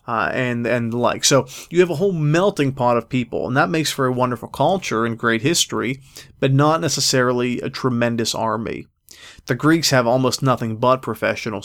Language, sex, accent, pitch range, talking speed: English, male, American, 120-140 Hz, 185 wpm